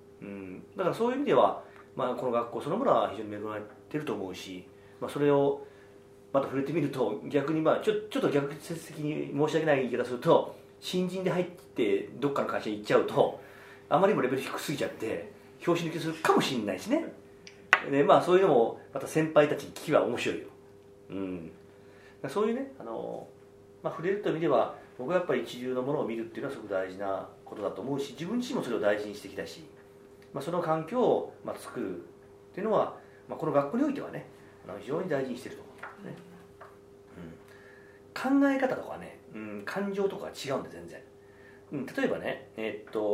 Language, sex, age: Japanese, male, 40-59